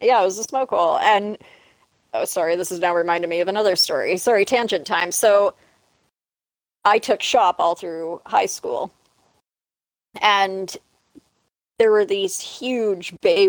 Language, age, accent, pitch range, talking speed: English, 40-59, American, 185-265 Hz, 150 wpm